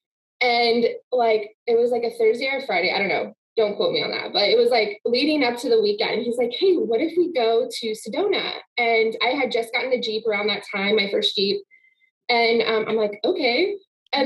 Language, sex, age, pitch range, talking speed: English, female, 20-39, 225-330 Hz, 225 wpm